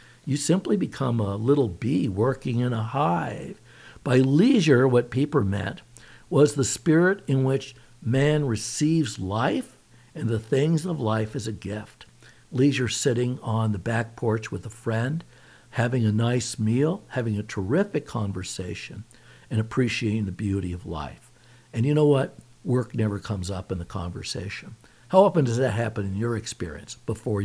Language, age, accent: English, 60-79, American